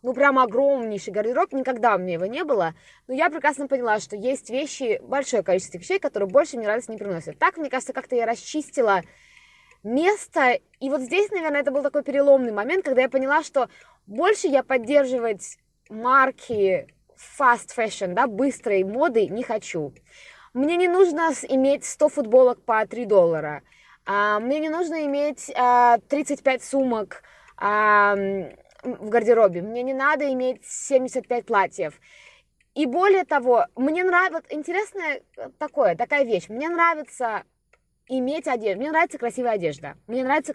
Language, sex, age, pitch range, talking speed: Russian, female, 20-39, 215-290 Hz, 145 wpm